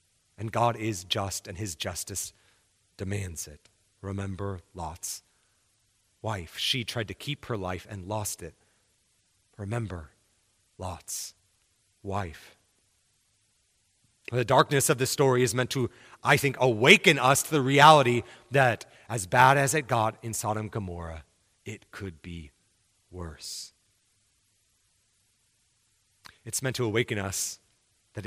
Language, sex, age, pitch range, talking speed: English, male, 30-49, 95-120 Hz, 125 wpm